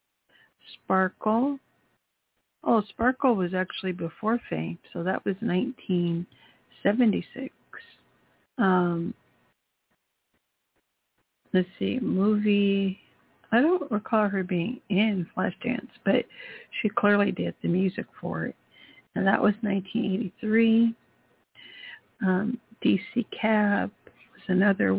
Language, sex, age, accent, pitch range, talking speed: English, female, 60-79, American, 185-230 Hz, 95 wpm